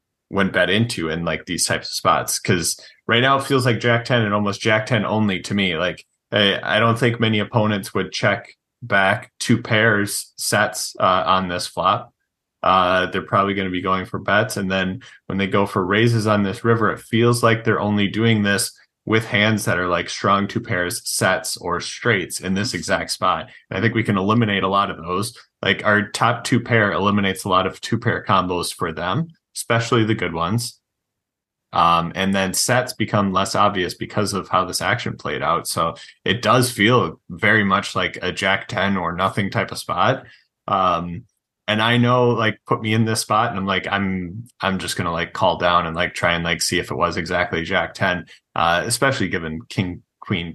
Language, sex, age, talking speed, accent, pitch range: English, male, 30-49, 210 wpm, American, 95-115 Hz